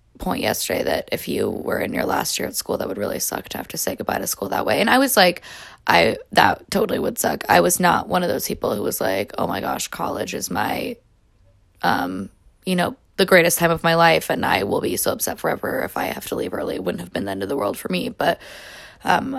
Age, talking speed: 10-29, 265 wpm